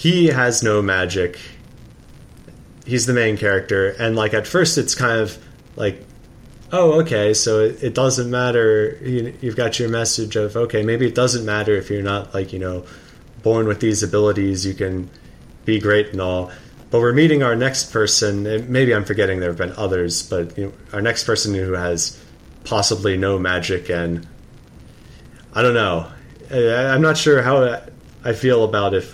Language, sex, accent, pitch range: English, male, American, 95-120 Hz